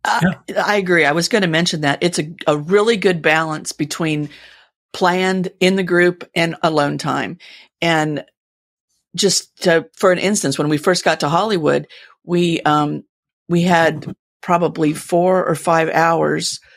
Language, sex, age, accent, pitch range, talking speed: English, female, 50-69, American, 155-185 Hz, 155 wpm